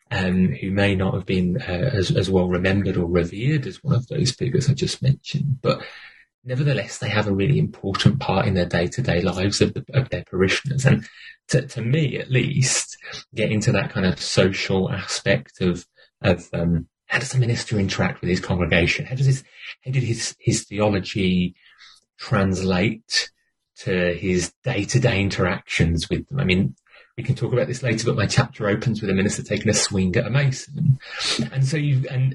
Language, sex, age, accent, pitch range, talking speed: English, male, 30-49, British, 95-135 Hz, 190 wpm